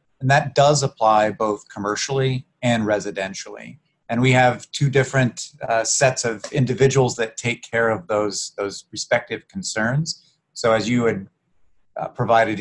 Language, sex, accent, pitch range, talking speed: English, male, American, 105-130 Hz, 150 wpm